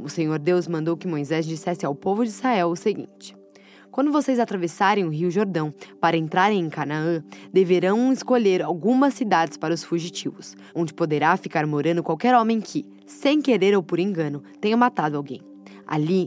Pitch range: 150-205 Hz